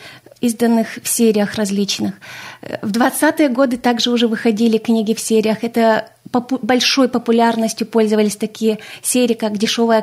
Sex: female